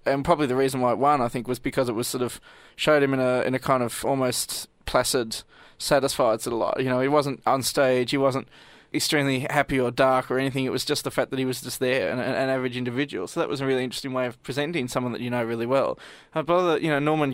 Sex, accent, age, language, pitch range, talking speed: male, Australian, 20-39, English, 125-140 Hz, 265 wpm